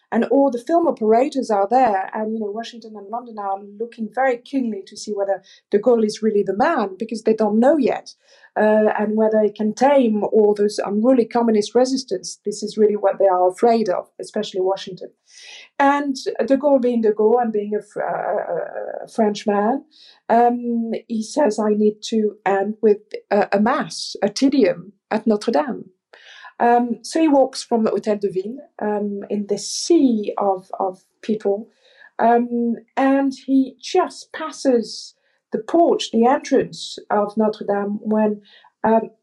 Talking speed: 170 wpm